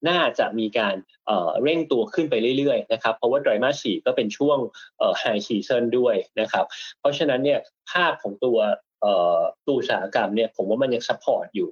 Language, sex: Thai, male